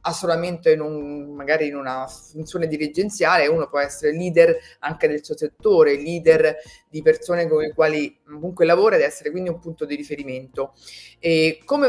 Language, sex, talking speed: Italian, female, 165 wpm